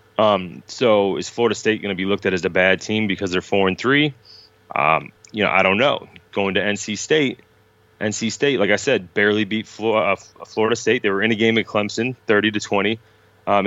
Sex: male